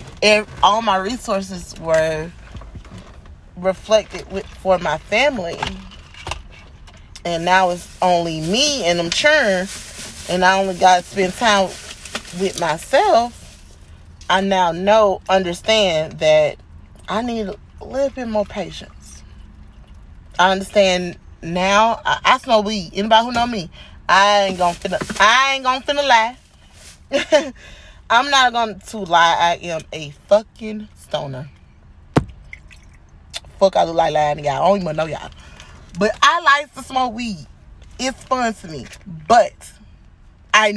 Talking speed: 135 wpm